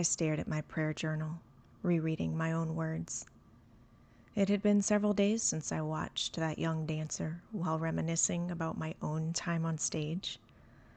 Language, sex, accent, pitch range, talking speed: English, female, American, 155-200 Hz, 160 wpm